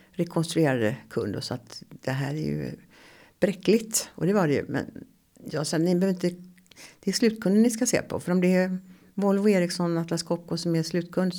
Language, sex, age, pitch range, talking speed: Swedish, female, 60-79, 145-185 Hz, 200 wpm